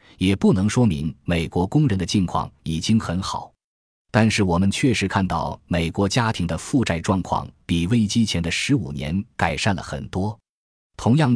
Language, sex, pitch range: Chinese, male, 85-115 Hz